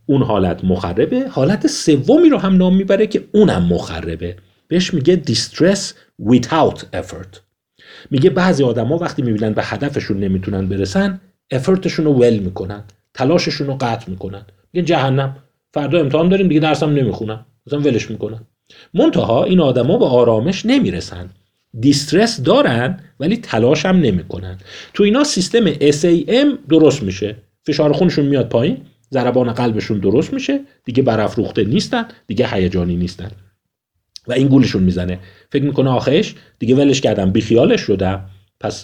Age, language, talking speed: 40-59, Persian, 135 wpm